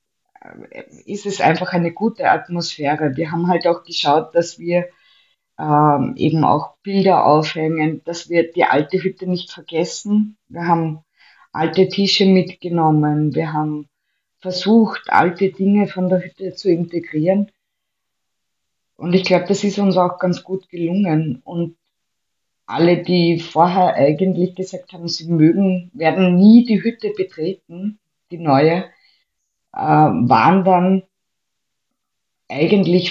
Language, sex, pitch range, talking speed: German, female, 160-185 Hz, 125 wpm